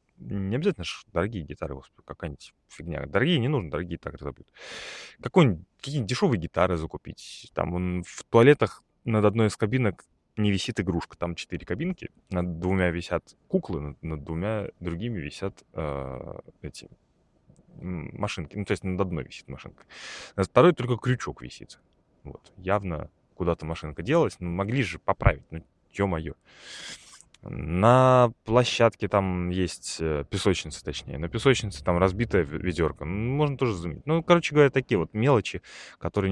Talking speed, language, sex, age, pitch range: 140 wpm, Russian, male, 20-39, 85-120 Hz